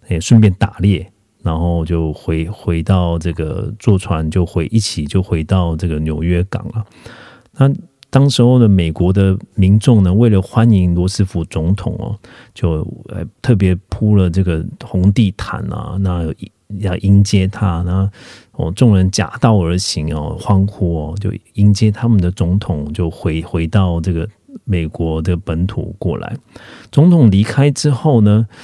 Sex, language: male, Korean